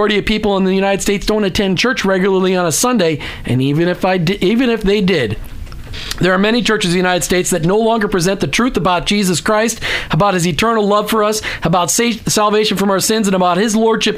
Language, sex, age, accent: English, male, 40-59, American